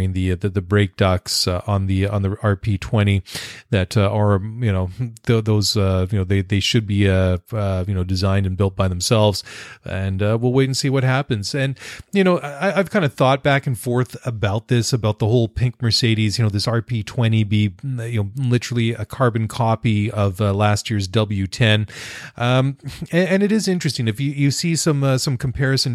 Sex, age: male, 30-49